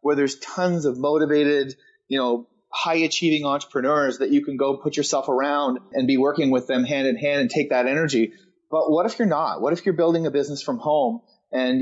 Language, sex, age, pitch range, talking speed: English, male, 30-49, 140-205 Hz, 210 wpm